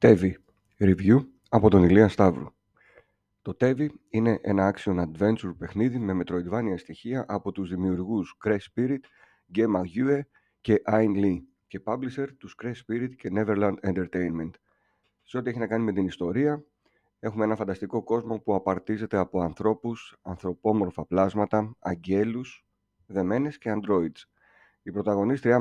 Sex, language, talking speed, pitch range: male, Greek, 135 wpm, 95-115 Hz